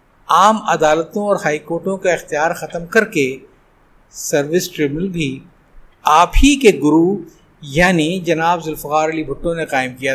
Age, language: 50-69, Urdu